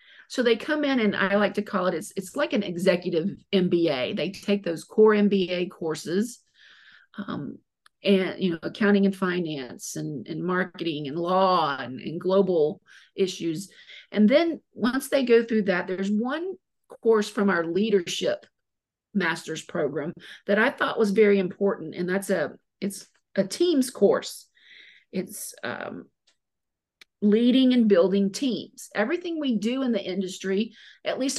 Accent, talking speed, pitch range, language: American, 155 wpm, 180-230 Hz, English